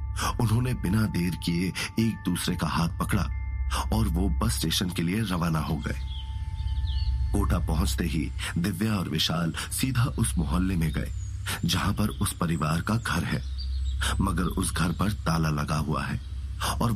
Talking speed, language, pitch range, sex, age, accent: 160 wpm, Hindi, 80-100 Hz, male, 40-59, native